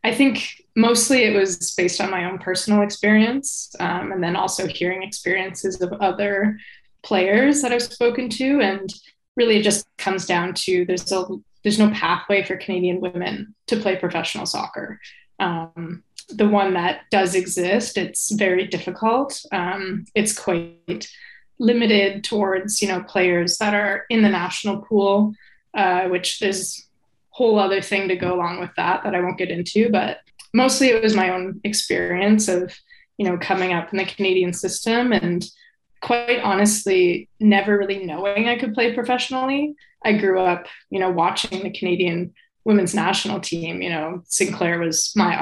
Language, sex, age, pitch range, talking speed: English, female, 20-39, 185-215 Hz, 165 wpm